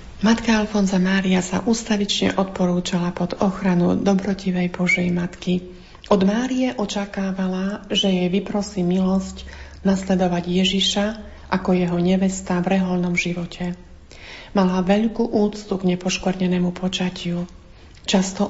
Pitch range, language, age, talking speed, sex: 180-205 Hz, Slovak, 40-59, 105 wpm, female